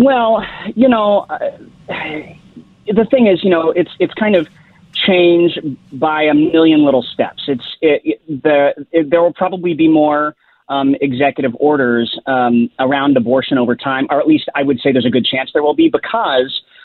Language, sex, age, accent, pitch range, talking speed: English, male, 30-49, American, 130-170 Hz, 180 wpm